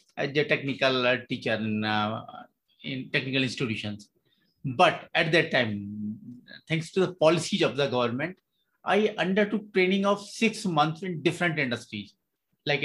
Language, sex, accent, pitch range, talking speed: English, male, Indian, 140-190 Hz, 140 wpm